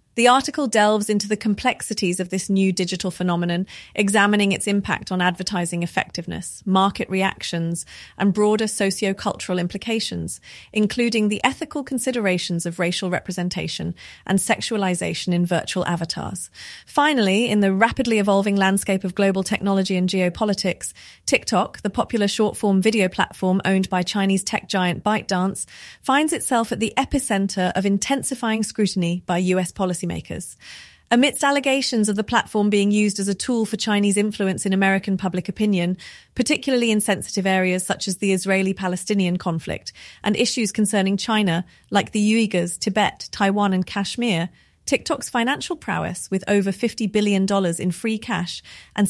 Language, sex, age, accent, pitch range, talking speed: English, female, 30-49, British, 185-220 Hz, 145 wpm